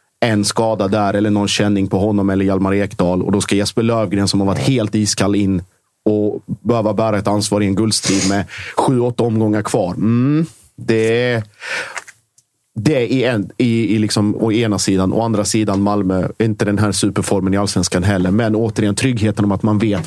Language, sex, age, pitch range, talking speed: Swedish, male, 30-49, 95-115 Hz, 195 wpm